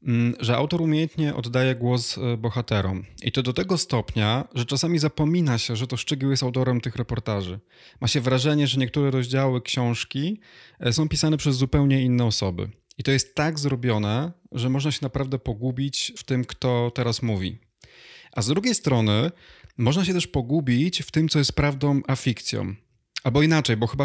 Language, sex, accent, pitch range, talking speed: Polish, male, native, 115-140 Hz, 170 wpm